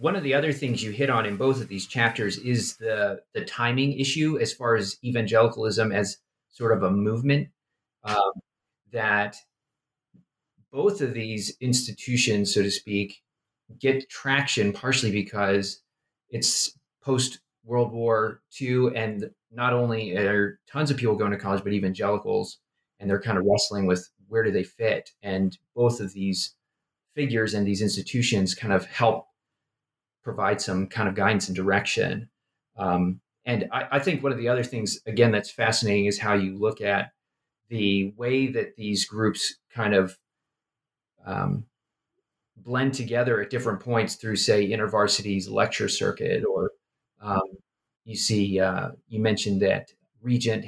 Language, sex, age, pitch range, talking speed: English, male, 30-49, 100-130 Hz, 155 wpm